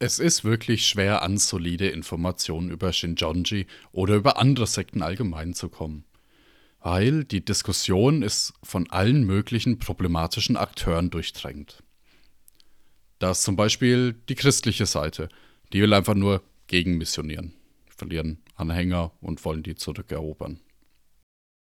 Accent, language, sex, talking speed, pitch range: German, German, male, 120 wpm, 90-115 Hz